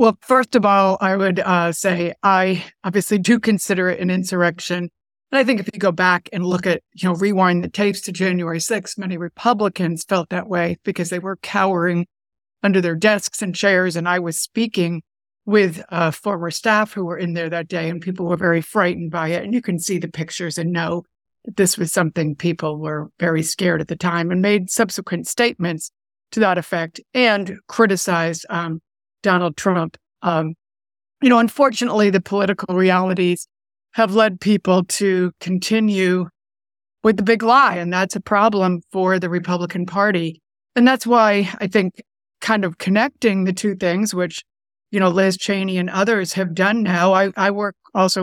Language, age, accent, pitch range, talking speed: English, 60-79, American, 175-205 Hz, 185 wpm